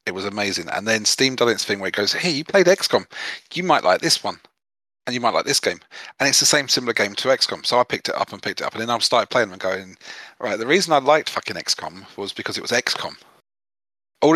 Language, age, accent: English, 30-49, British